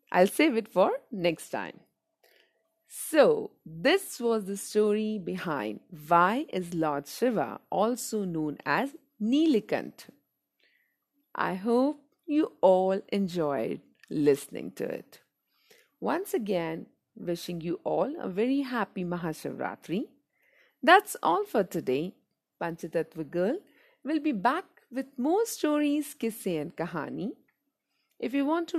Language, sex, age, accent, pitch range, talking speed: Hindi, female, 50-69, native, 170-290 Hz, 115 wpm